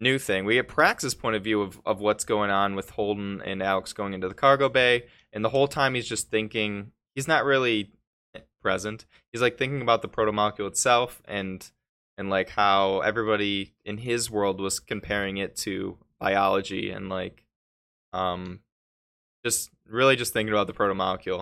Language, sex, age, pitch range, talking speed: English, male, 10-29, 95-110 Hz, 175 wpm